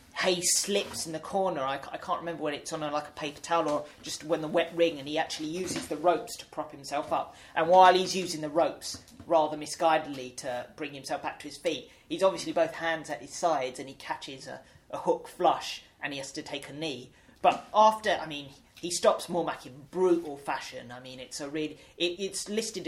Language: English